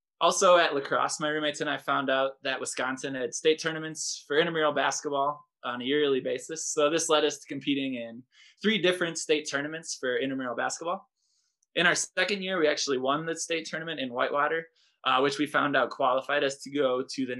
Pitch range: 135-165 Hz